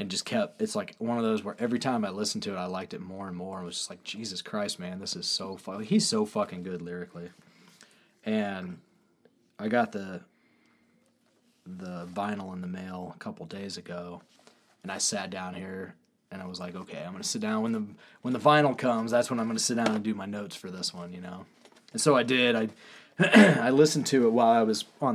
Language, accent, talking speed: English, American, 240 wpm